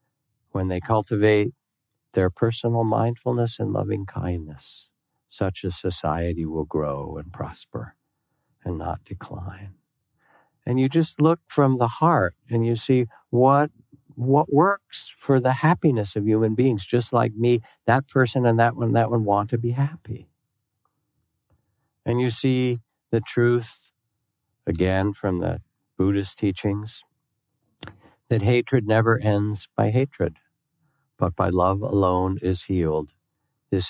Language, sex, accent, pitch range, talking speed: English, male, American, 90-120 Hz, 135 wpm